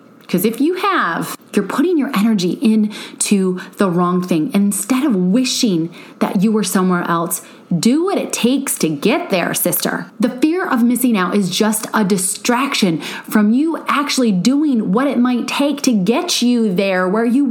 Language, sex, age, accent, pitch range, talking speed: English, female, 30-49, American, 185-255 Hz, 175 wpm